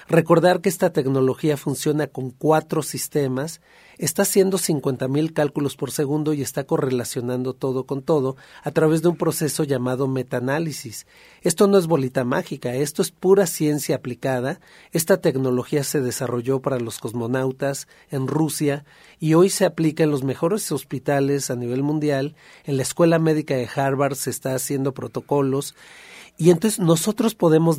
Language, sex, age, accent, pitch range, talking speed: Spanish, male, 40-59, Mexican, 135-165 Hz, 155 wpm